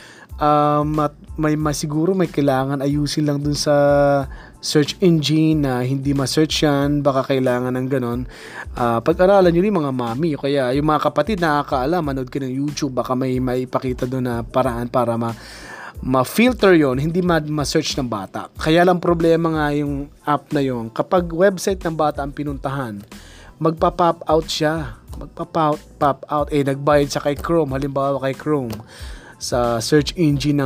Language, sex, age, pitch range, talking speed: Filipino, male, 20-39, 130-165 Hz, 160 wpm